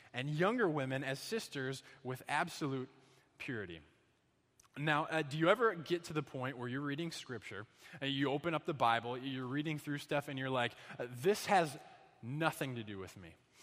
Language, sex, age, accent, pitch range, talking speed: English, male, 20-39, American, 135-170 Hz, 180 wpm